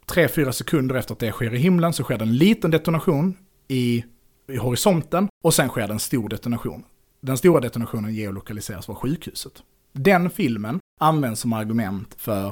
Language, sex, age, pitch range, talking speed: Swedish, male, 30-49, 110-145 Hz, 160 wpm